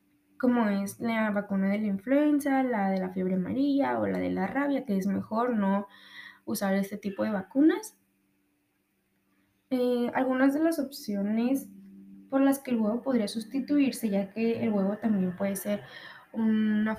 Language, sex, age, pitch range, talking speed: Spanish, female, 10-29, 195-255 Hz, 165 wpm